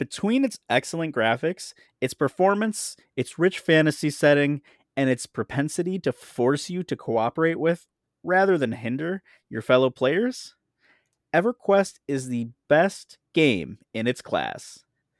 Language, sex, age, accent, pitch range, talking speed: English, male, 30-49, American, 120-170 Hz, 130 wpm